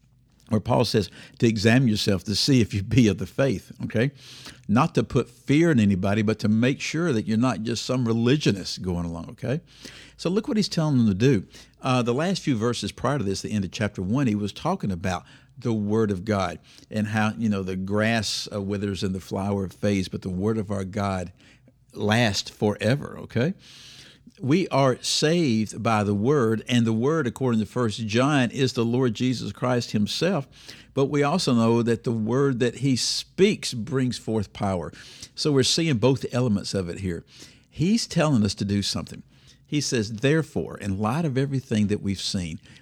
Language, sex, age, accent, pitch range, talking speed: English, male, 60-79, American, 105-135 Hz, 195 wpm